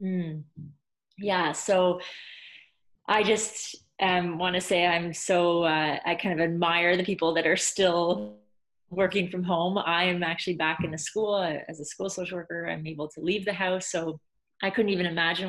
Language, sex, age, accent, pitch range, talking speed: English, female, 30-49, American, 165-195 Hz, 175 wpm